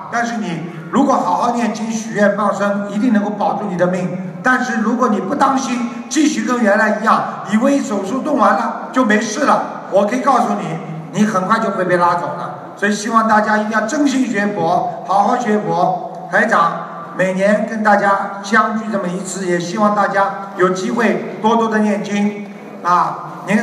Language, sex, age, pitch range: Chinese, male, 50-69, 195-235 Hz